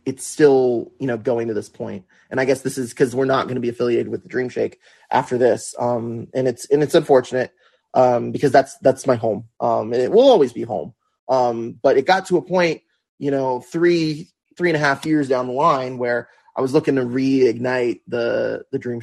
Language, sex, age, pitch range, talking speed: English, male, 20-39, 125-155 Hz, 225 wpm